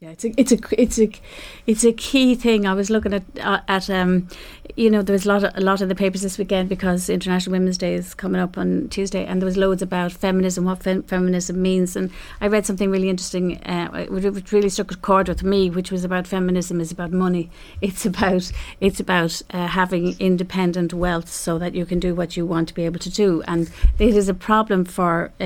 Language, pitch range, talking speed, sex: English, 180-205 Hz, 230 wpm, female